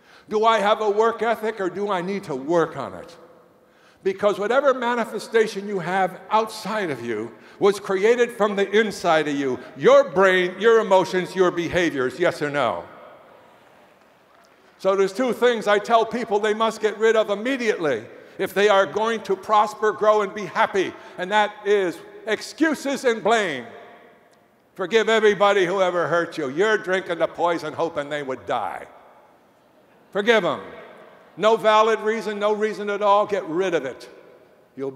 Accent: American